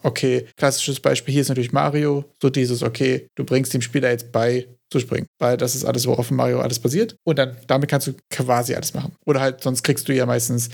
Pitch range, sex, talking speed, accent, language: 125-155 Hz, male, 235 wpm, German, German